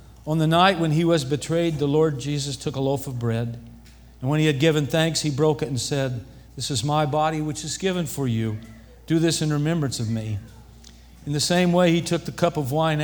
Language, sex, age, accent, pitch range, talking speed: English, male, 50-69, American, 125-160 Hz, 235 wpm